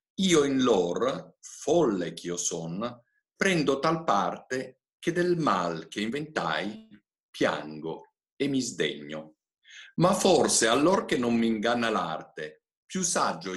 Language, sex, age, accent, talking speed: Italian, male, 50-69, native, 125 wpm